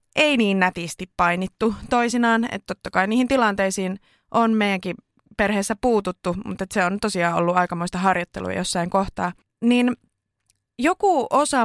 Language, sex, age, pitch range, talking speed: Finnish, female, 20-39, 185-240 Hz, 130 wpm